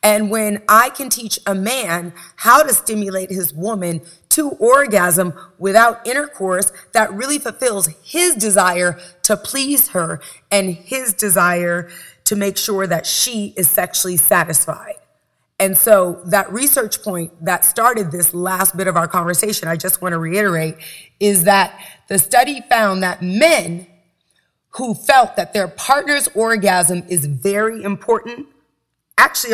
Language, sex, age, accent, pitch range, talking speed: English, female, 30-49, American, 185-230 Hz, 140 wpm